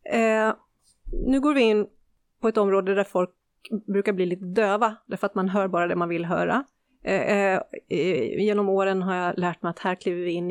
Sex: female